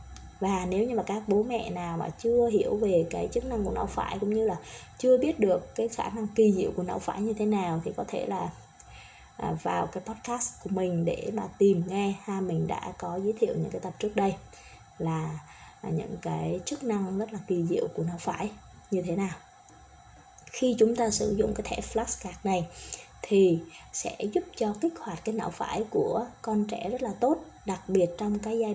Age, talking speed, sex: 20-39, 215 wpm, female